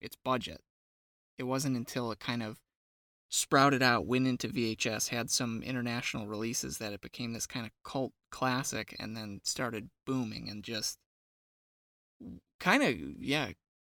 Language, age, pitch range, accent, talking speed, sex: English, 20-39, 105-130 Hz, American, 145 wpm, male